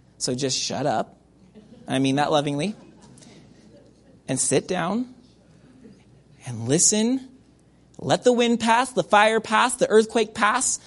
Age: 30-49